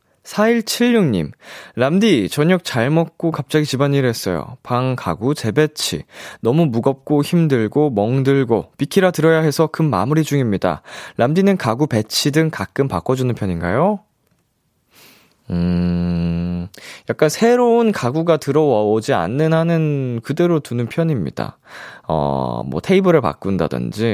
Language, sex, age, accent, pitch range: Korean, male, 20-39, native, 105-165 Hz